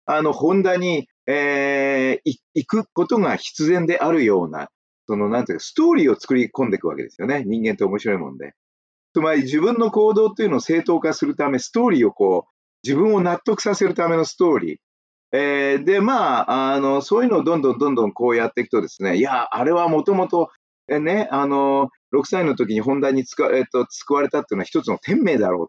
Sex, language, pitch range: male, Japanese, 140-220 Hz